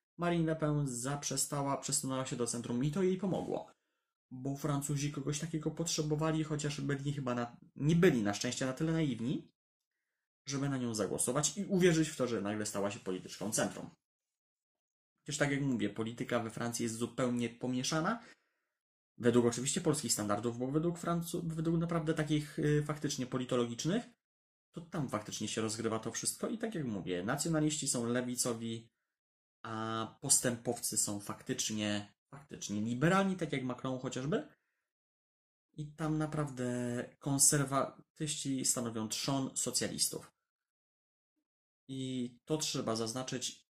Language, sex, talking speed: Polish, male, 130 wpm